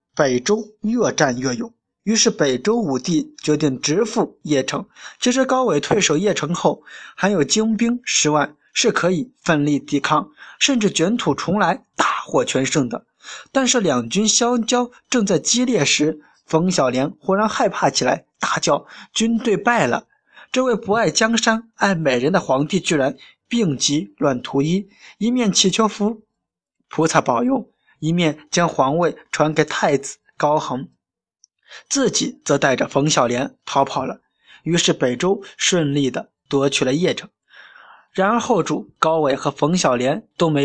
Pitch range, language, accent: 145-215 Hz, Chinese, native